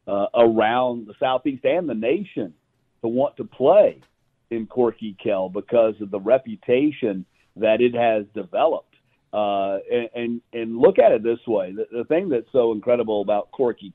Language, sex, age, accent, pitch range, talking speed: English, male, 50-69, American, 105-130 Hz, 170 wpm